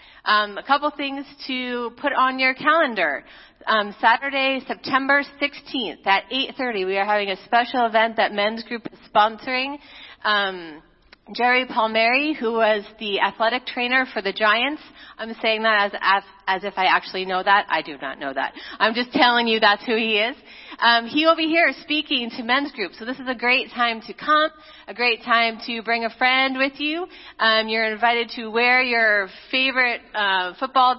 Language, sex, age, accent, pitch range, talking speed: English, female, 30-49, American, 220-275 Hz, 190 wpm